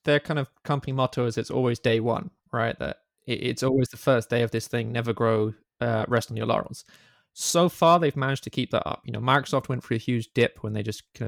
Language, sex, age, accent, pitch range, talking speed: English, male, 20-39, British, 110-130 Hz, 250 wpm